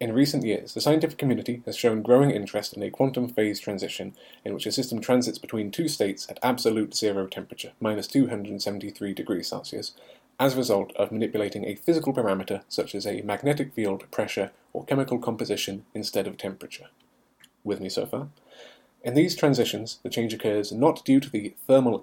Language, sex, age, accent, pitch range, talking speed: English, male, 30-49, British, 105-130 Hz, 180 wpm